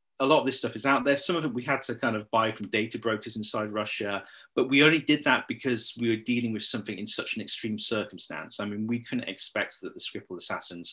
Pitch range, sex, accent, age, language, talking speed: 100-120 Hz, male, British, 30-49, English, 260 wpm